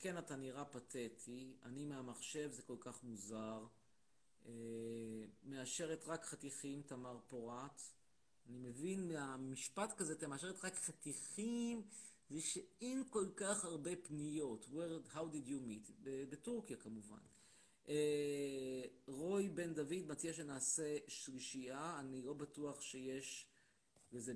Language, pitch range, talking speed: Hebrew, 130-175 Hz, 115 wpm